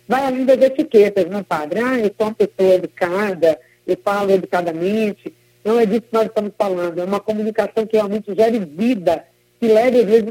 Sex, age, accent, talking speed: female, 50-69, Brazilian, 190 wpm